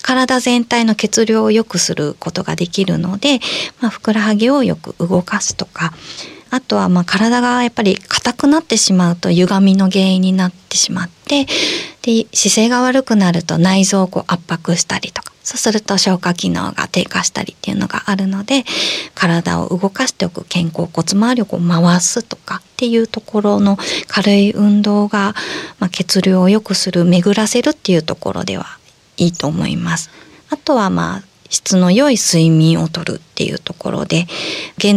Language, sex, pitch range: Japanese, female, 180-235 Hz